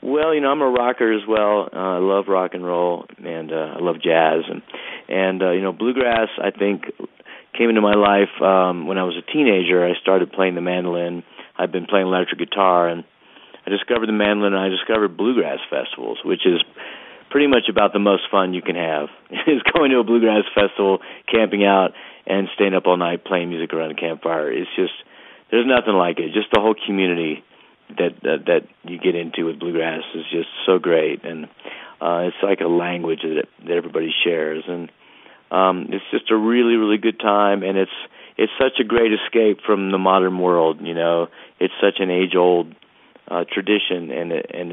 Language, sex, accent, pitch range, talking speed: English, male, American, 85-105 Hz, 200 wpm